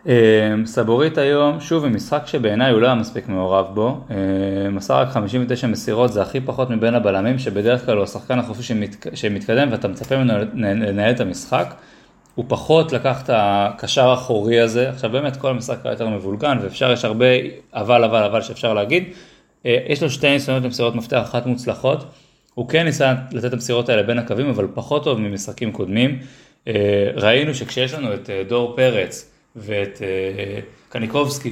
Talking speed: 175 wpm